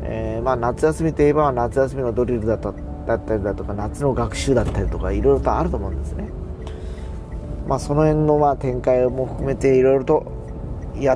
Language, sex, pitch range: Japanese, male, 80-130 Hz